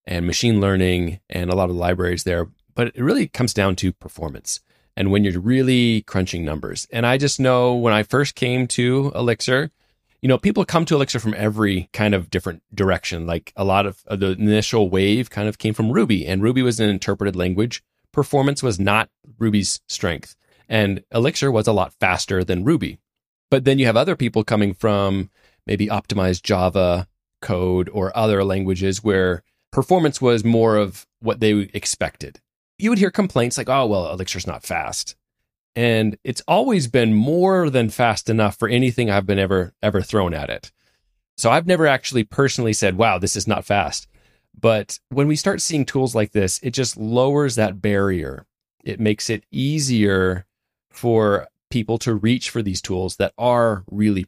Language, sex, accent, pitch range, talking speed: English, male, American, 95-125 Hz, 180 wpm